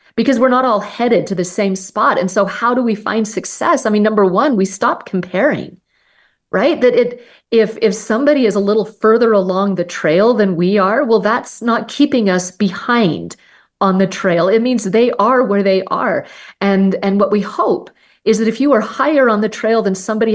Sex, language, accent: female, English, American